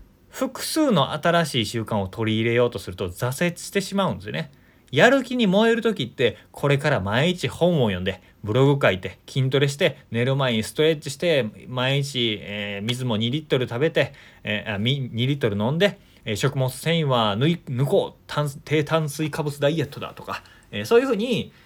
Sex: male